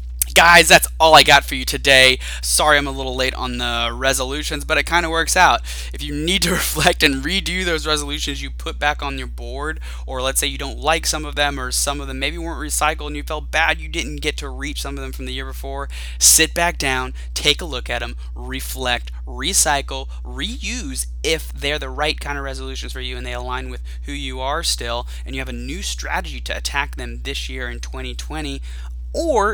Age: 20-39